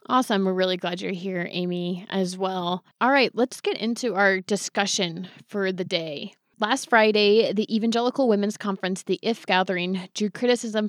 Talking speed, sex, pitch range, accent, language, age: 165 wpm, female, 185-215 Hz, American, English, 20-39